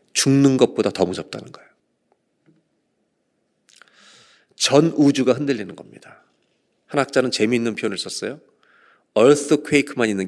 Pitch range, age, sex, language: 110-150 Hz, 40-59, male, Korean